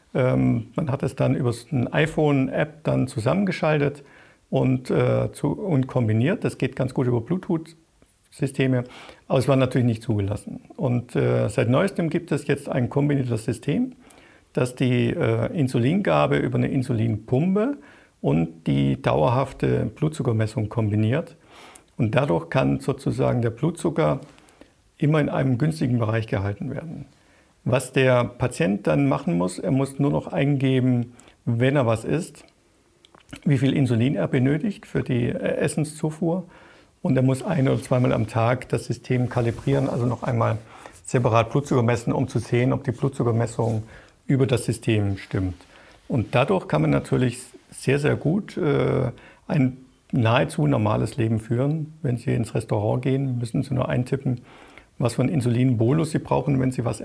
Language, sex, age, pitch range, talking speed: German, male, 50-69, 115-145 Hz, 150 wpm